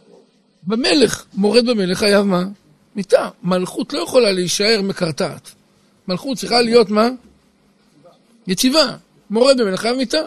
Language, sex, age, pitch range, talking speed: Hebrew, male, 50-69, 195-225 Hz, 115 wpm